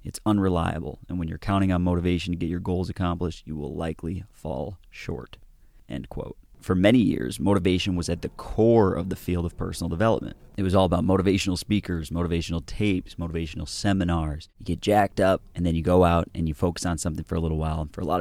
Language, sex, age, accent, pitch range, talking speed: English, male, 30-49, American, 80-95 Hz, 220 wpm